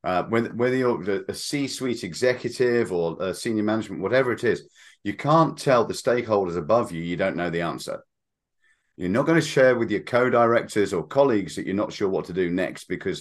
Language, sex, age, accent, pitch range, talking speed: English, male, 40-59, British, 95-125 Hz, 200 wpm